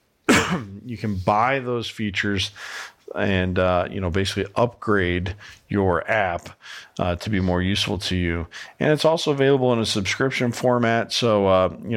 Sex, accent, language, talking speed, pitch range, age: male, American, English, 155 wpm, 95-115 Hz, 40-59